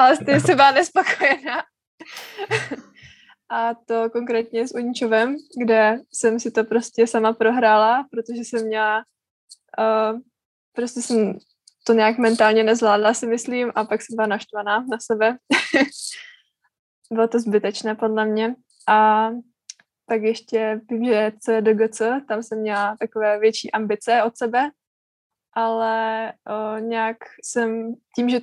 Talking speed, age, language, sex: 135 wpm, 20-39, Czech, female